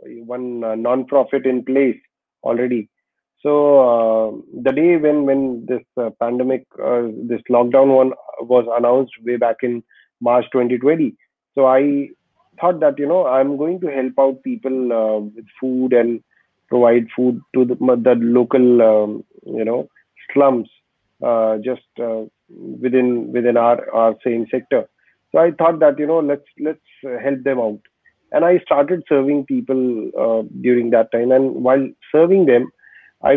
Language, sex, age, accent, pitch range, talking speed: English, male, 30-49, Indian, 120-135 Hz, 155 wpm